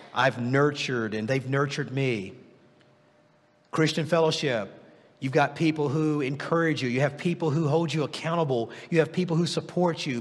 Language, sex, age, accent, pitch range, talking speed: English, male, 50-69, American, 160-215 Hz, 160 wpm